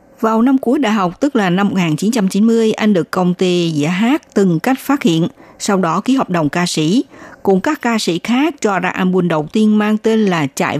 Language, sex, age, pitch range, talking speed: Vietnamese, female, 60-79, 170-230 Hz, 220 wpm